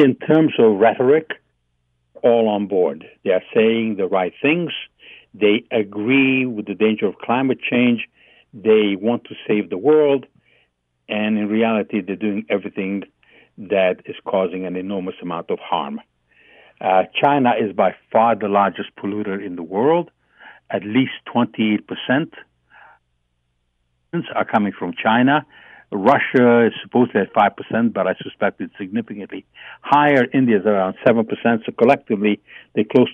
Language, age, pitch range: English, 60-79, 100-130 Hz